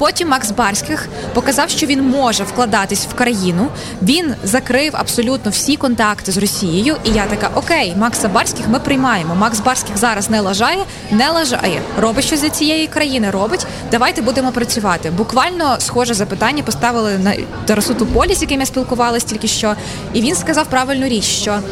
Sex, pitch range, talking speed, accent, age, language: female, 220-275 Hz, 165 wpm, native, 20-39, Ukrainian